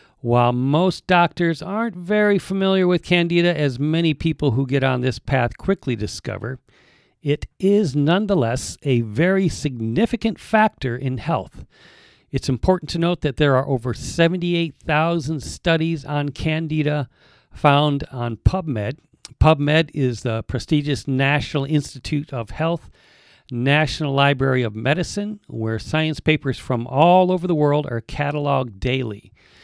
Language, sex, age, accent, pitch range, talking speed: English, male, 50-69, American, 125-160 Hz, 130 wpm